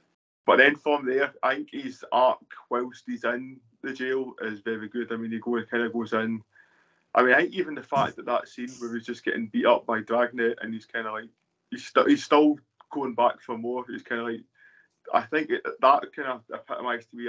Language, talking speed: English, 240 wpm